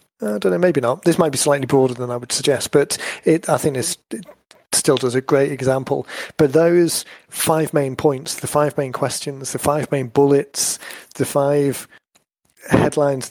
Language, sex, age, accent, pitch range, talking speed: English, male, 30-49, British, 130-145 Hz, 180 wpm